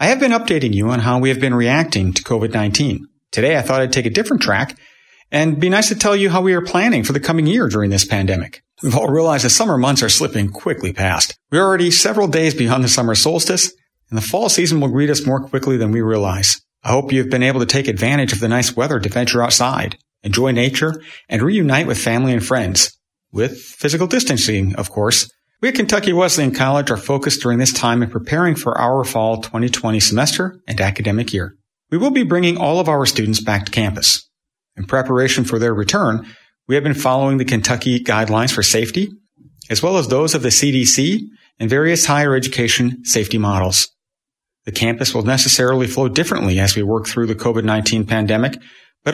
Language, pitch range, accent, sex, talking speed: English, 110-150 Hz, American, male, 205 wpm